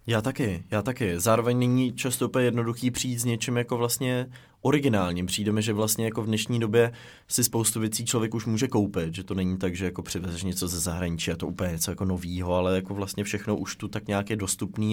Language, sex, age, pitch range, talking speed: Czech, male, 20-39, 100-120 Hz, 220 wpm